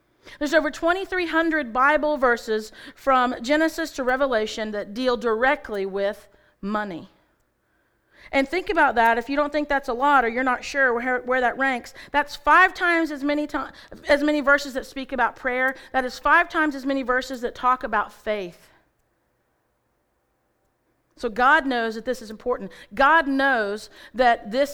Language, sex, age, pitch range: English, female, 40-59, 215-280 Hz